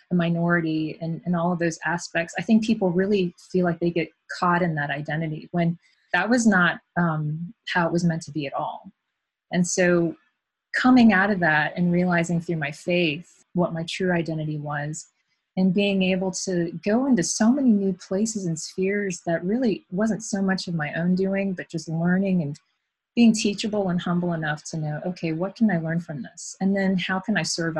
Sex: female